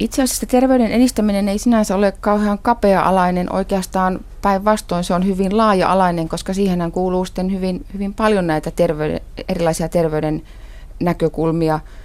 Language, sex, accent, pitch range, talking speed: Finnish, female, native, 160-190 Hz, 130 wpm